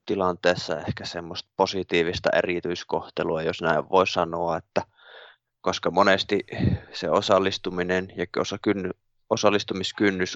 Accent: native